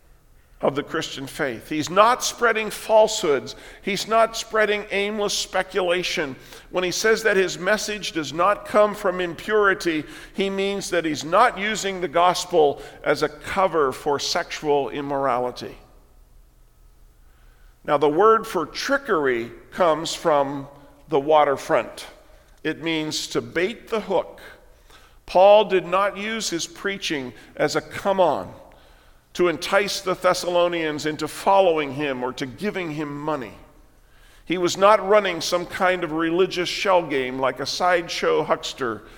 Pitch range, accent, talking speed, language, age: 145-200 Hz, American, 135 wpm, English, 50-69